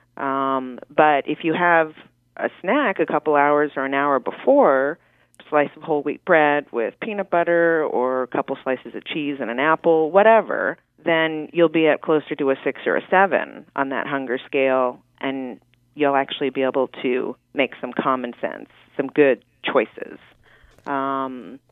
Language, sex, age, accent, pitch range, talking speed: English, female, 30-49, American, 135-160 Hz, 170 wpm